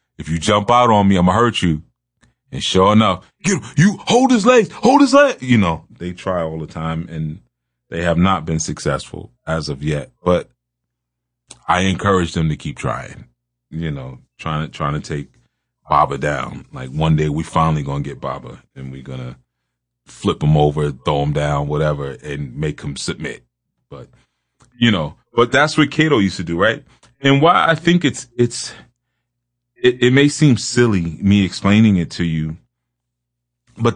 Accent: American